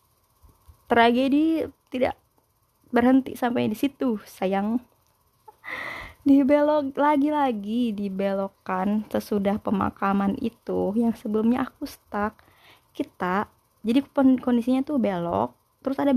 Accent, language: native, Indonesian